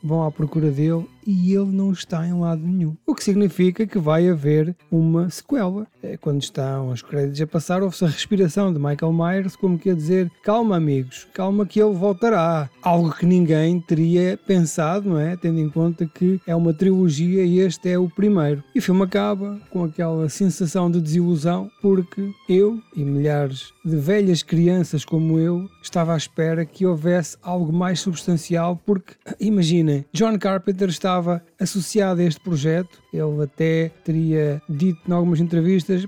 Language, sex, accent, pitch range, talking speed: Portuguese, male, Portuguese, 155-185 Hz, 170 wpm